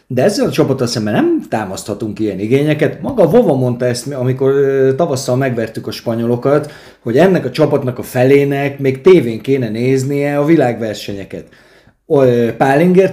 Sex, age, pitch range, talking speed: male, 30-49, 125-160 Hz, 135 wpm